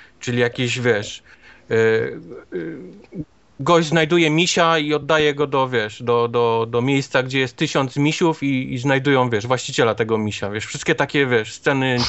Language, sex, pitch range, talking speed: Polish, male, 120-170 Hz, 170 wpm